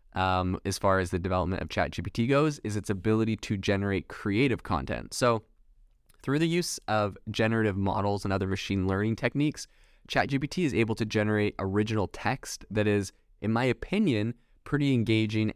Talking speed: 160 wpm